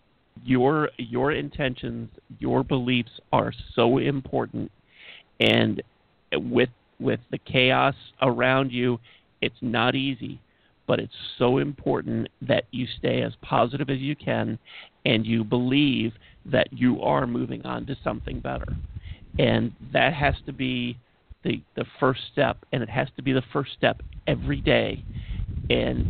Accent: American